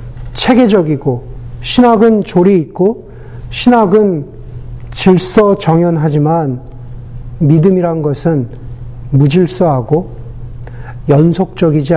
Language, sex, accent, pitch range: Korean, male, native, 125-190 Hz